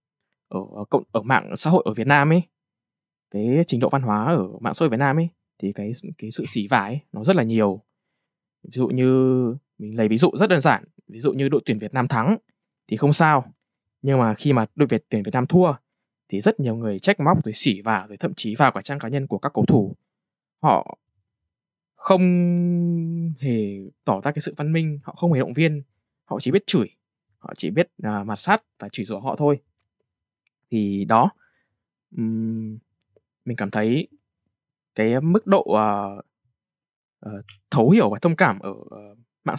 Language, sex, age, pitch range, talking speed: Vietnamese, male, 10-29, 105-160 Hz, 195 wpm